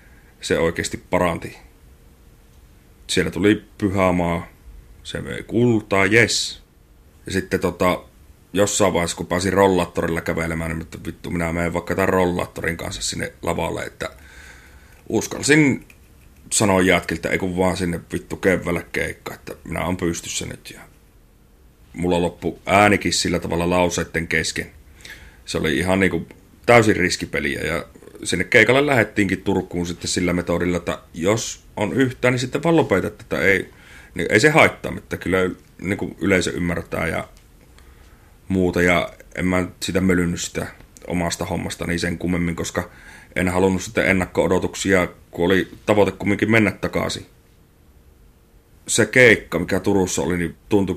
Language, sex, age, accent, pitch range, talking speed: Finnish, male, 30-49, native, 85-95 Hz, 135 wpm